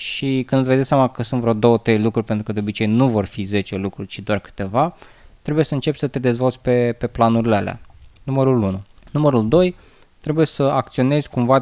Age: 20-39